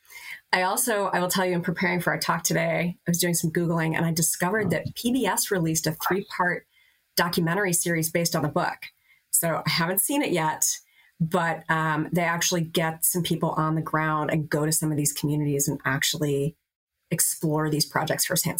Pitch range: 160-195 Hz